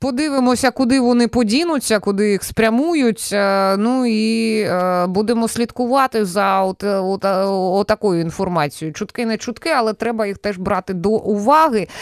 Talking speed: 135 wpm